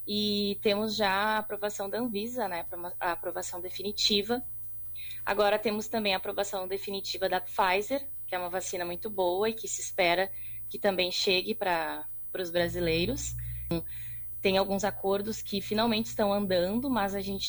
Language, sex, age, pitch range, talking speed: Portuguese, female, 20-39, 170-210 Hz, 155 wpm